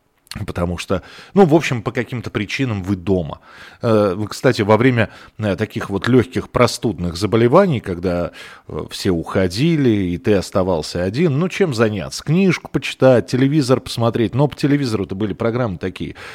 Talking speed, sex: 145 wpm, male